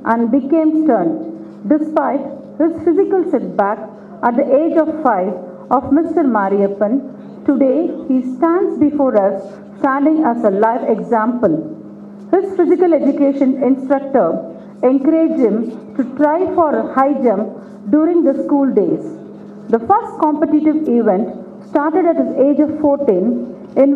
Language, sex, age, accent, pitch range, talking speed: Tamil, female, 50-69, native, 230-315 Hz, 130 wpm